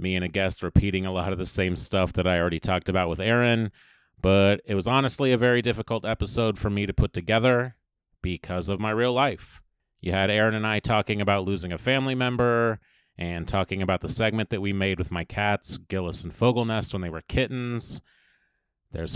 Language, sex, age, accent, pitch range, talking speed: English, male, 30-49, American, 95-115 Hz, 205 wpm